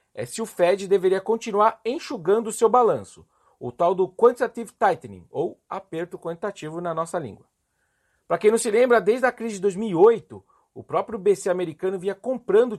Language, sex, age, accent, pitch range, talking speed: Portuguese, male, 40-59, Brazilian, 180-230 Hz, 175 wpm